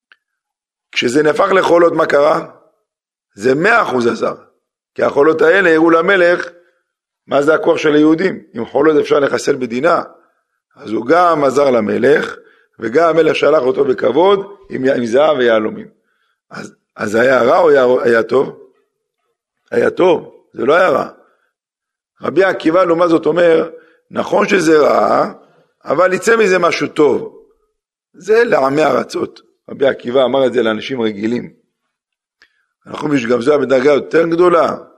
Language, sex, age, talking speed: Hebrew, male, 50-69, 135 wpm